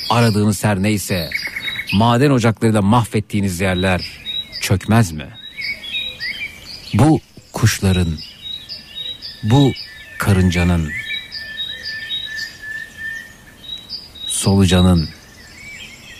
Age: 60-79